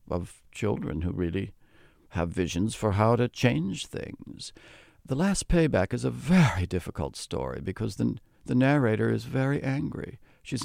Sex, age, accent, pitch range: male, 60-79, American, 105-140 Hz